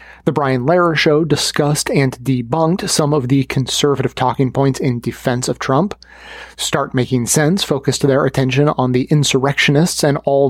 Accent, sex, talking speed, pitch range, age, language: American, male, 160 wpm, 130-155 Hz, 30-49, English